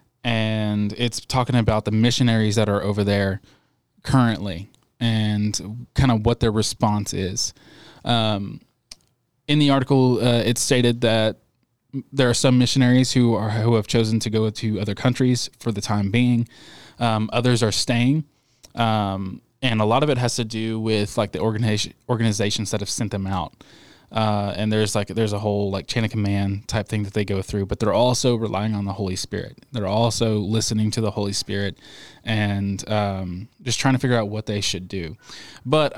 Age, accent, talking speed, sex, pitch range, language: 20-39, American, 185 wpm, male, 105-125 Hz, English